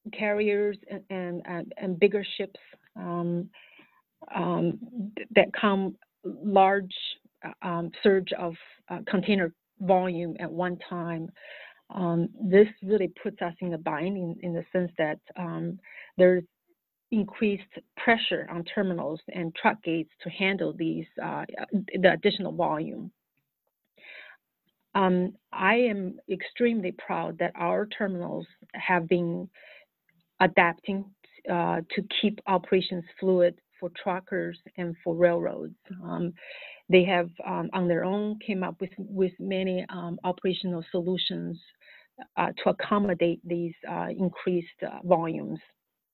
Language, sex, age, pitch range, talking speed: English, female, 40-59, 175-200 Hz, 120 wpm